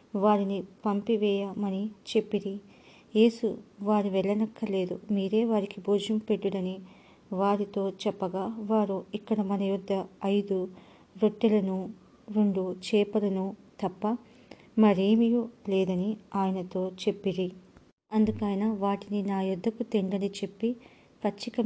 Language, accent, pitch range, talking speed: English, Indian, 195-220 Hz, 95 wpm